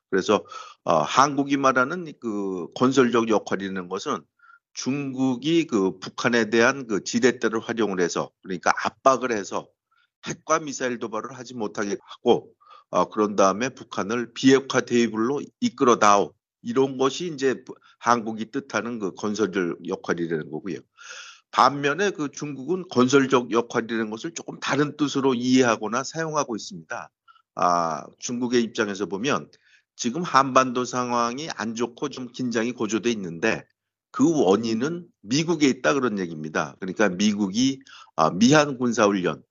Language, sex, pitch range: Korean, male, 110-140 Hz